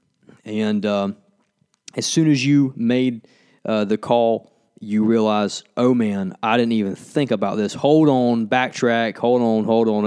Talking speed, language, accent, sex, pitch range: 160 wpm, English, American, male, 100-120 Hz